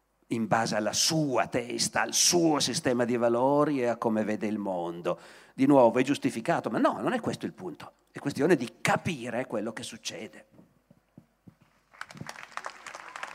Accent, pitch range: native, 125-170 Hz